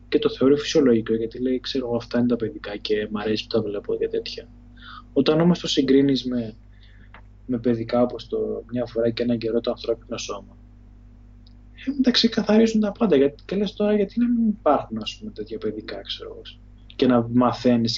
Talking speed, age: 185 wpm, 20-39